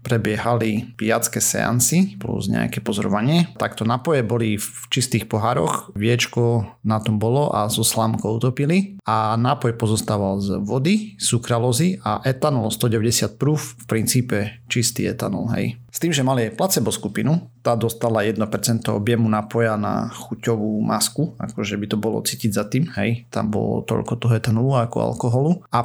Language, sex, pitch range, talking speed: Slovak, male, 110-125 Hz, 155 wpm